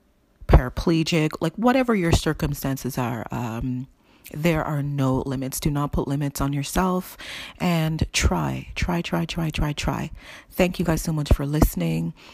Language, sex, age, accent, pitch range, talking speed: English, female, 40-59, American, 140-170 Hz, 150 wpm